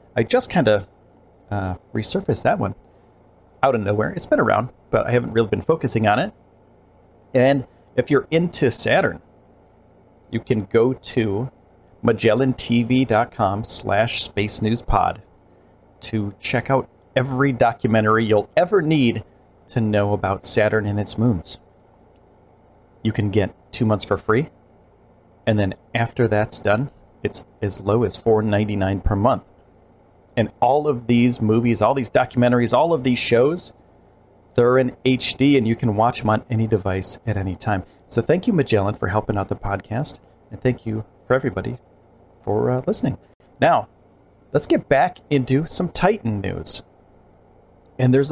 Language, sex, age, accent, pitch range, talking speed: English, male, 40-59, American, 100-125 Hz, 150 wpm